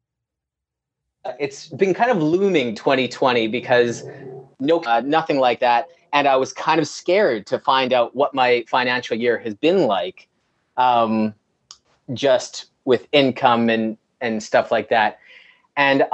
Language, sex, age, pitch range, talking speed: English, male, 30-49, 120-155 Hz, 140 wpm